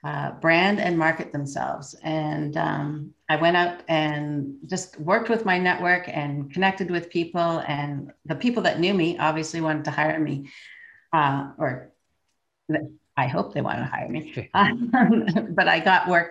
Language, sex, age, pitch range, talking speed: English, female, 50-69, 150-180 Hz, 165 wpm